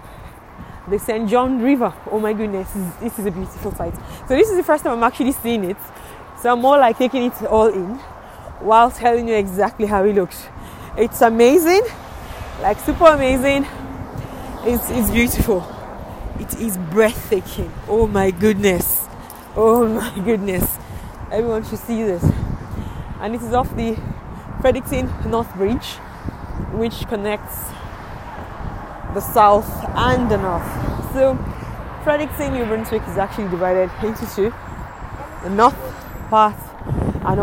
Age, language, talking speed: 20-39, English, 140 wpm